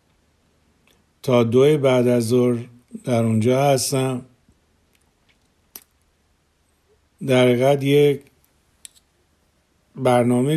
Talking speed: 70 wpm